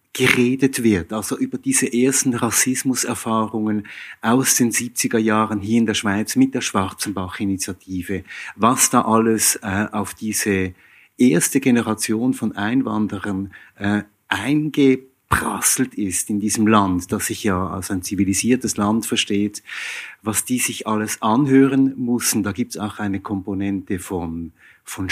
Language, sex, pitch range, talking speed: German, male, 100-120 Hz, 135 wpm